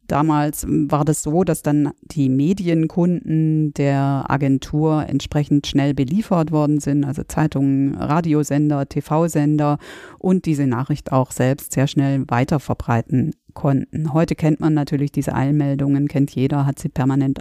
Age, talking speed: 50-69, 135 wpm